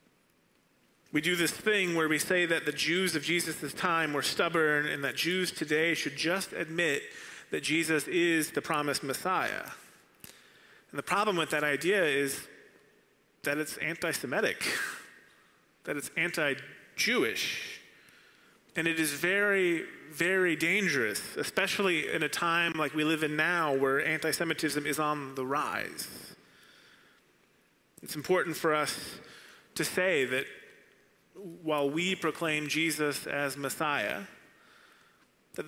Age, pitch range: 30-49, 145-170 Hz